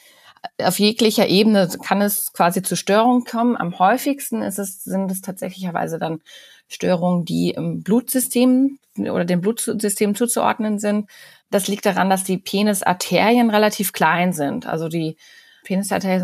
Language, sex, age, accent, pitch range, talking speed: German, female, 30-49, German, 180-220 Hz, 140 wpm